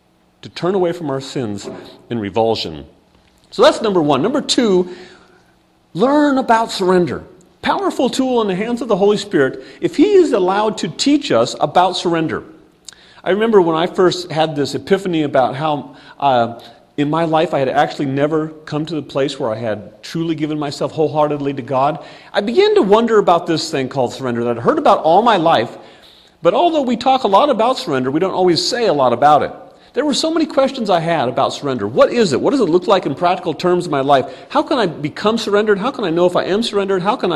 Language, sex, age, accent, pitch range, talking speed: English, male, 40-59, American, 150-225 Hz, 220 wpm